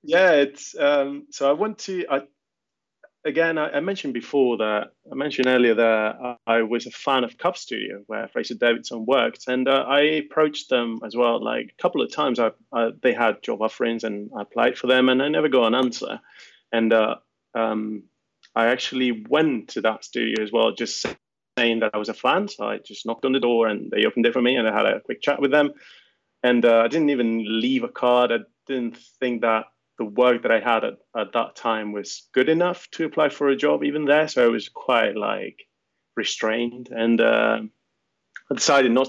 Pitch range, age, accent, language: 115-140 Hz, 30-49, British, English